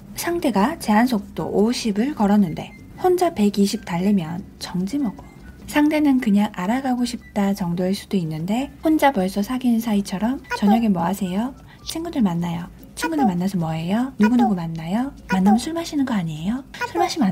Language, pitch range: Korean, 195-250 Hz